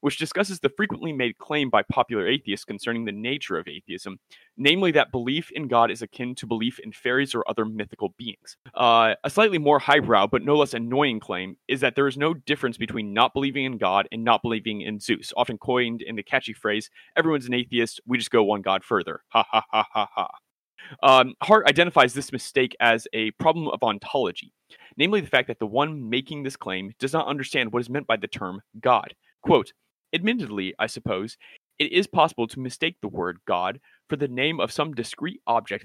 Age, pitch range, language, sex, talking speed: 30-49, 110-145 Hz, English, male, 205 wpm